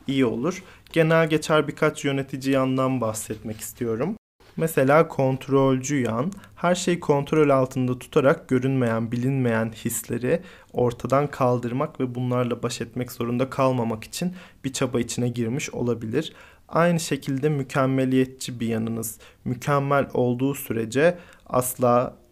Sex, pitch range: male, 115-135 Hz